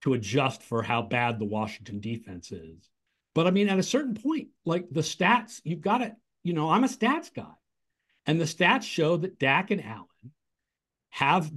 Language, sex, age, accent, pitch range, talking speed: English, male, 50-69, American, 130-190 Hz, 190 wpm